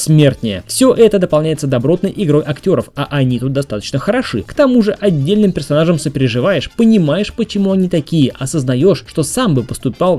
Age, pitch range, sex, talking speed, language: 20-39, 130-195 Hz, male, 155 wpm, Russian